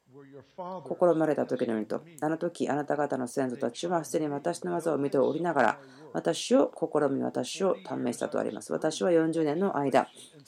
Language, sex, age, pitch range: Japanese, female, 40-59, 135-170 Hz